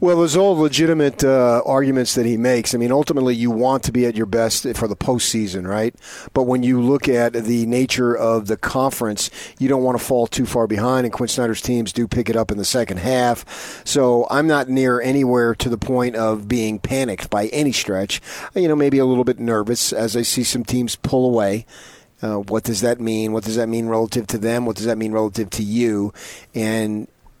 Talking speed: 220 wpm